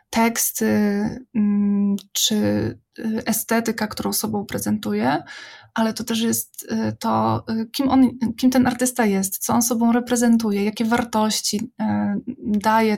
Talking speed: 110 wpm